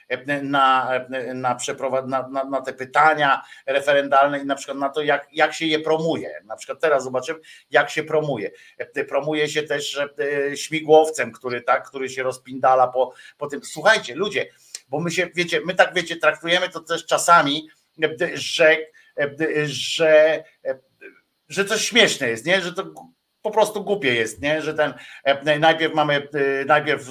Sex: male